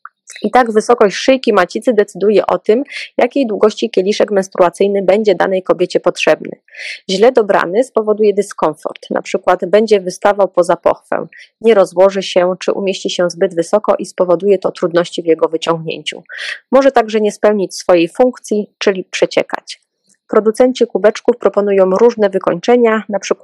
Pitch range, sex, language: 185-225 Hz, female, Polish